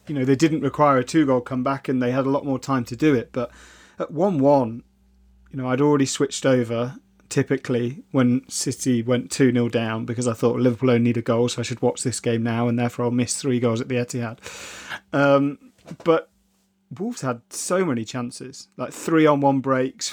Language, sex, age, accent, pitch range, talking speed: English, male, 30-49, British, 125-145 Hz, 200 wpm